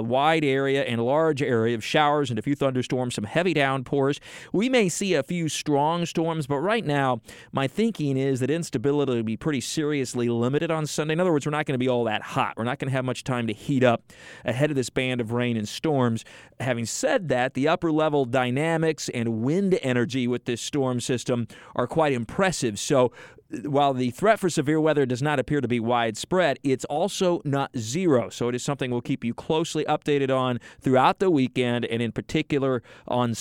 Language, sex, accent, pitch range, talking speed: English, male, American, 120-150 Hz, 210 wpm